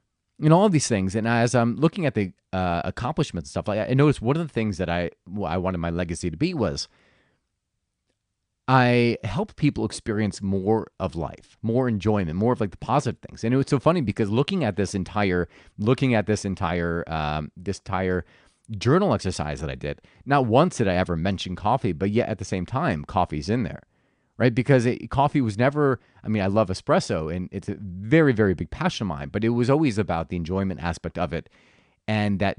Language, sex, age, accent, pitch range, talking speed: English, male, 30-49, American, 95-135 Hz, 215 wpm